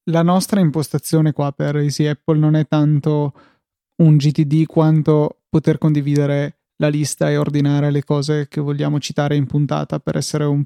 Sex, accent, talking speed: male, native, 170 wpm